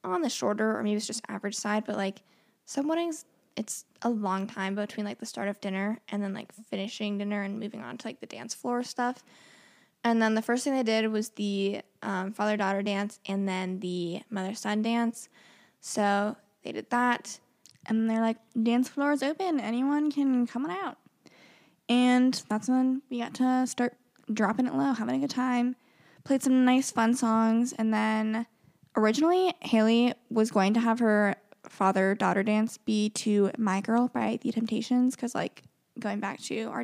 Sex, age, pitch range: female, 10-29, 205-250 Hz